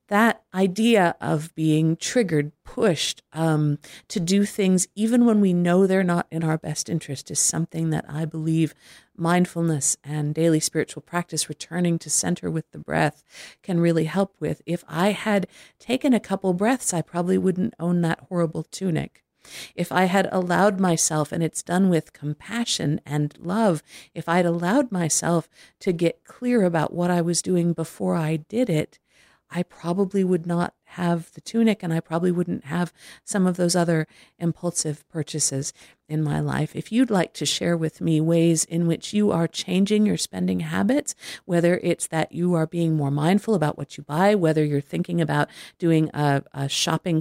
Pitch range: 155-185 Hz